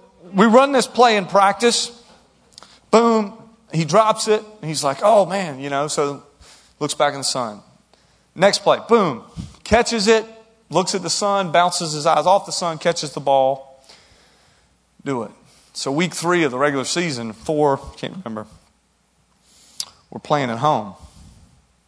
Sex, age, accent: male, 40-59, American